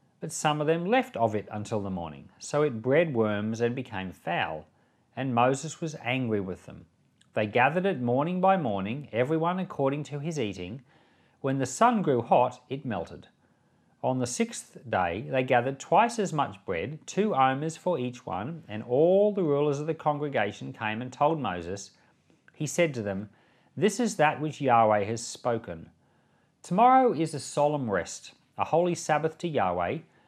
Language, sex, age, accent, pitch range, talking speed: English, male, 40-59, Australian, 115-160 Hz, 175 wpm